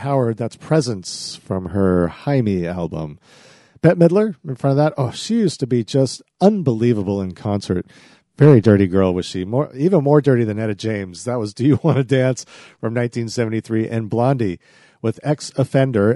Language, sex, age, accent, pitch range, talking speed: English, male, 40-59, American, 105-140 Hz, 180 wpm